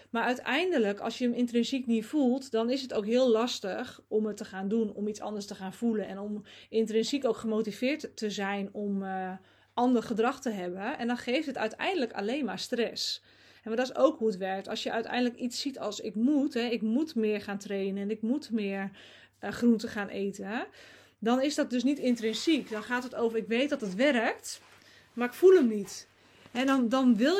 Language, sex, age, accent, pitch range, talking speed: Dutch, female, 20-39, Dutch, 220-265 Hz, 220 wpm